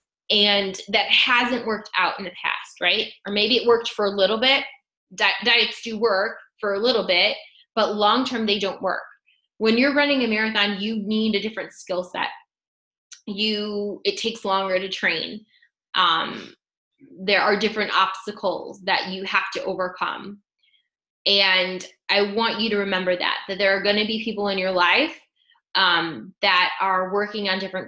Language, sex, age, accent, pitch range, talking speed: English, female, 10-29, American, 190-235 Hz, 170 wpm